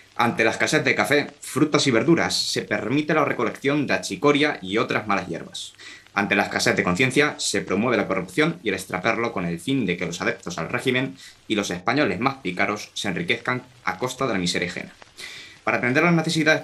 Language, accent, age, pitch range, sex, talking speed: Spanish, Spanish, 20-39, 100-135 Hz, male, 200 wpm